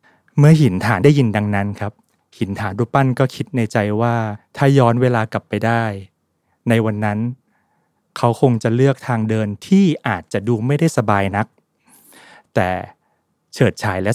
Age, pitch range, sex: 20-39, 110-140 Hz, male